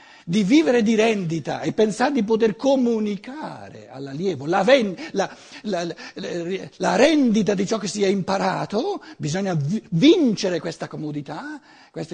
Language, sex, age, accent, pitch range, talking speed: Italian, male, 60-79, native, 150-240 Hz, 125 wpm